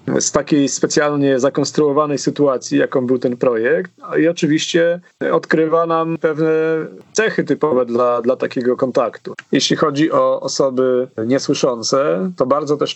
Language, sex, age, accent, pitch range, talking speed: Polish, male, 40-59, native, 130-150 Hz, 130 wpm